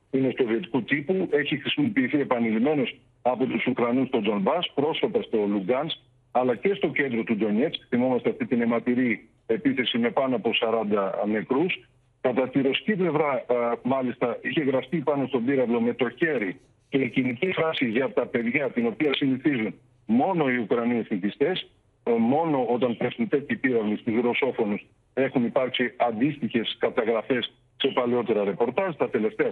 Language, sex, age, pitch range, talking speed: Greek, male, 50-69, 120-145 Hz, 150 wpm